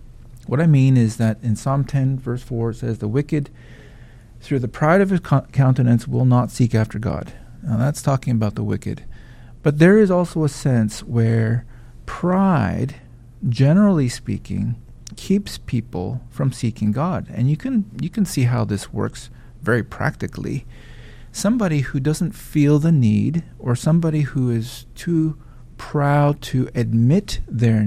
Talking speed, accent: 155 wpm, American